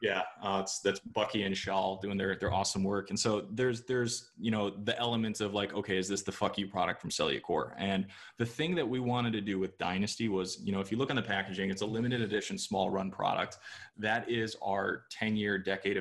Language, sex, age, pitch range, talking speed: English, male, 20-39, 95-115 Hz, 235 wpm